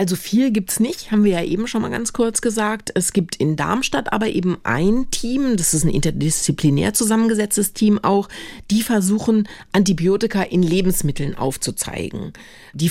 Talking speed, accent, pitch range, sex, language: 165 wpm, German, 155-205 Hz, female, German